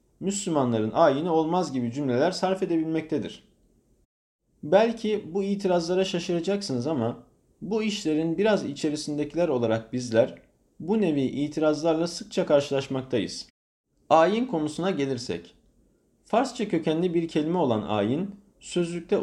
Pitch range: 135-175 Hz